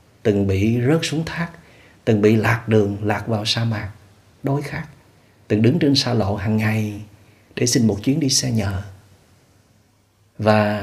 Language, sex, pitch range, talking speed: Vietnamese, male, 105-130 Hz, 165 wpm